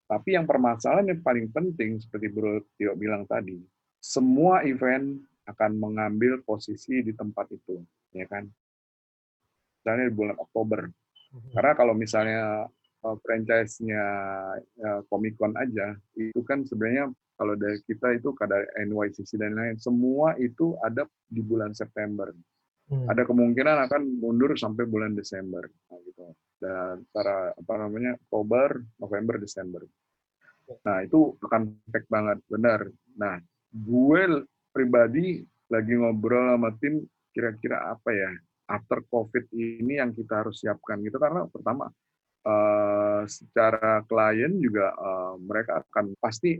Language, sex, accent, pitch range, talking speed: Indonesian, male, native, 105-125 Hz, 125 wpm